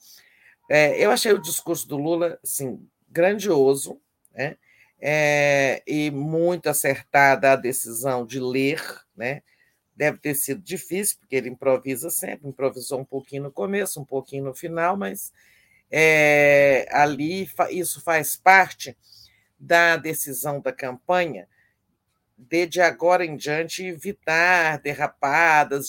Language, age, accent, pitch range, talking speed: Portuguese, 50-69, Brazilian, 130-165 Hz, 125 wpm